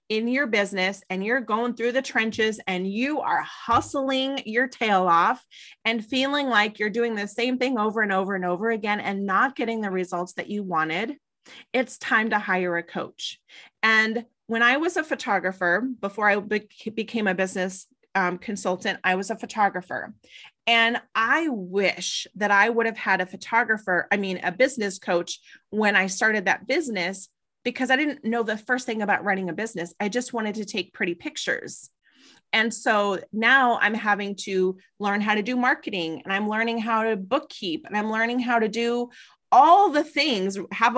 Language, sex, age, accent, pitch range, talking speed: English, female, 30-49, American, 195-245 Hz, 185 wpm